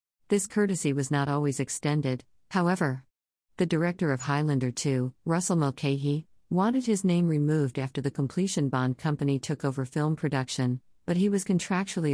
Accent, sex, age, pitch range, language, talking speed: American, female, 50-69, 130-155 Hz, English, 155 wpm